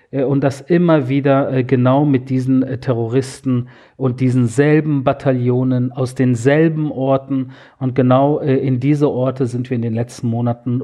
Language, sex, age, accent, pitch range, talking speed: German, male, 40-59, German, 130-155 Hz, 145 wpm